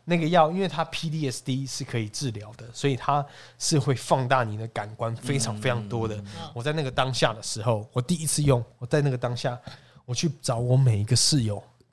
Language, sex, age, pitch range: Chinese, male, 20-39, 115-140 Hz